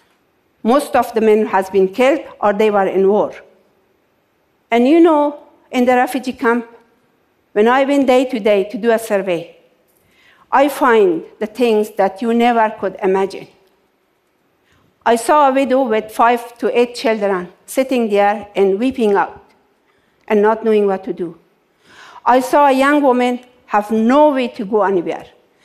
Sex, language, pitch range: female, Japanese, 210-270 Hz